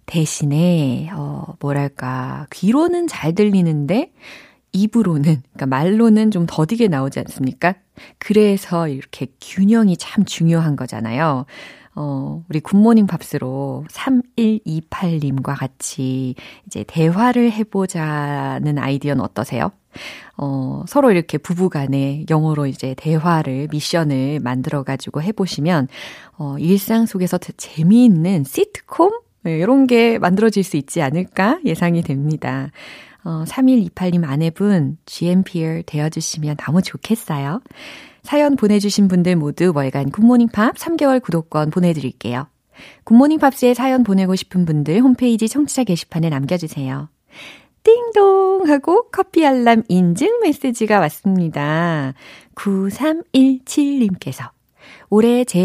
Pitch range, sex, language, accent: 150-225 Hz, female, Korean, native